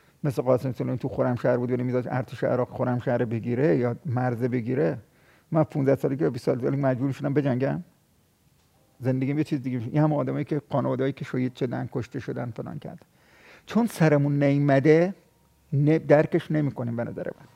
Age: 50-69